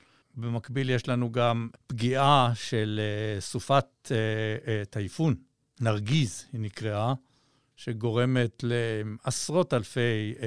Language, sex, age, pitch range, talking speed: Hebrew, male, 60-79, 120-175 Hz, 80 wpm